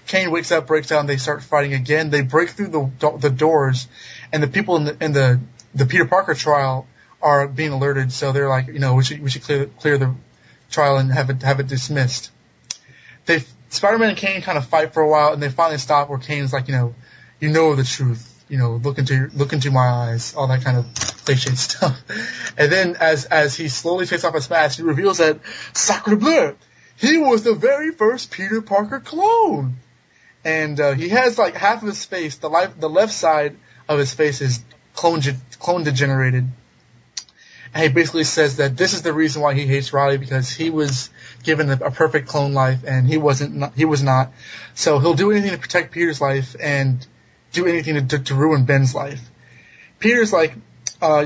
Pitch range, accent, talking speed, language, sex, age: 135-165 Hz, American, 210 wpm, English, male, 20-39